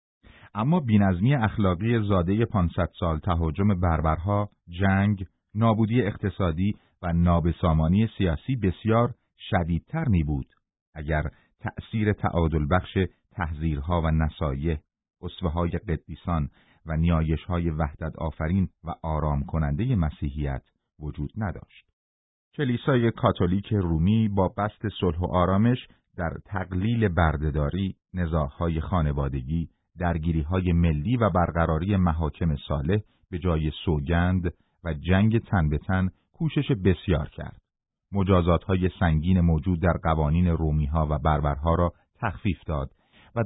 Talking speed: 115 wpm